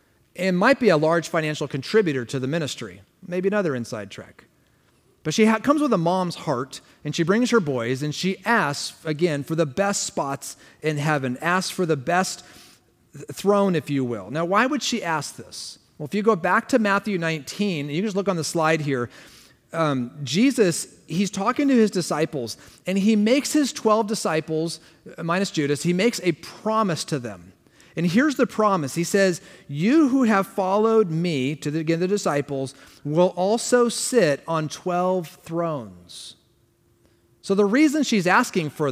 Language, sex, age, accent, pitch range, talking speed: English, male, 40-59, American, 145-205 Hz, 180 wpm